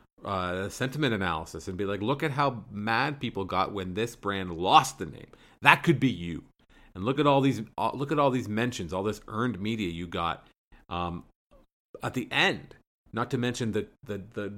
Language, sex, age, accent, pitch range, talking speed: English, male, 40-59, American, 95-120 Hz, 200 wpm